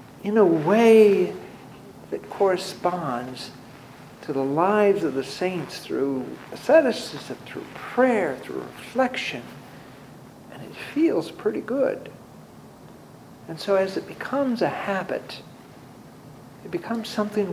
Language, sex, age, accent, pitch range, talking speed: English, male, 60-79, American, 150-215 Hz, 110 wpm